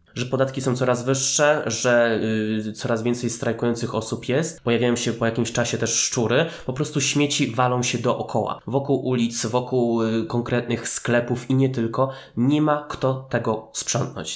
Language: Polish